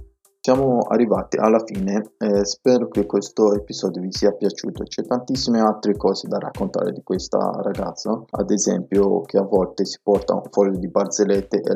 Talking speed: 170 wpm